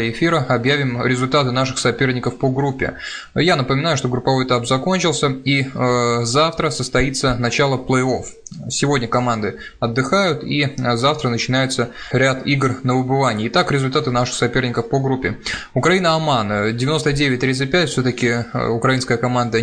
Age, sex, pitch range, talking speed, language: 20-39, male, 120-140 Hz, 125 wpm, Russian